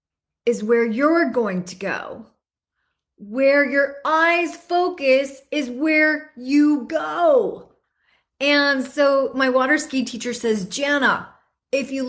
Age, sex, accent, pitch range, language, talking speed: 30-49, female, American, 235-300 Hz, English, 120 wpm